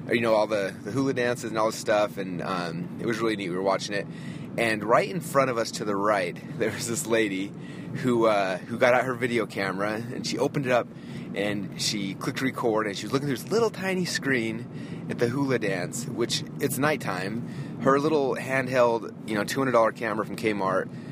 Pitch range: 110-145 Hz